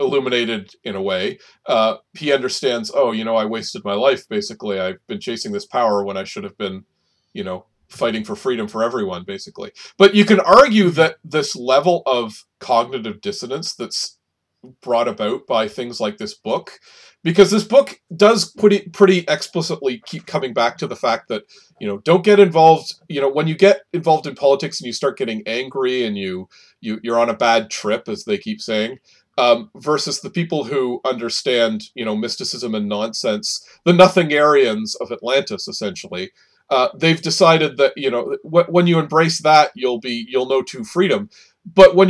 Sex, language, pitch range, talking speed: male, English, 125-195 Hz, 185 wpm